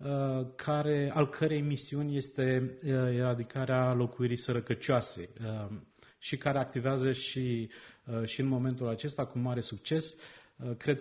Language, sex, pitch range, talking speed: Romanian, male, 120-140 Hz, 110 wpm